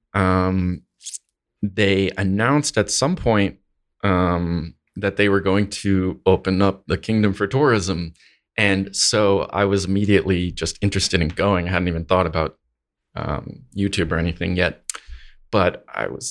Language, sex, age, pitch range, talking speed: English, male, 20-39, 90-105 Hz, 145 wpm